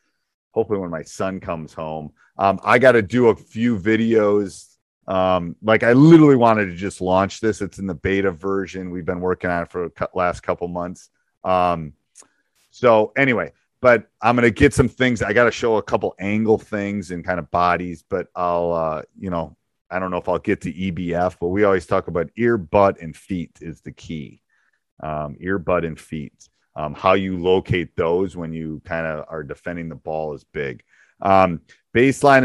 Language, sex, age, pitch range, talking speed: English, male, 30-49, 90-115 Hz, 195 wpm